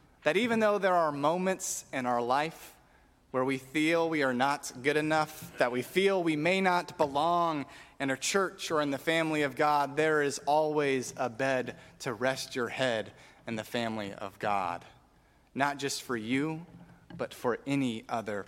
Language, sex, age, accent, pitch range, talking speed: English, male, 30-49, American, 125-155 Hz, 180 wpm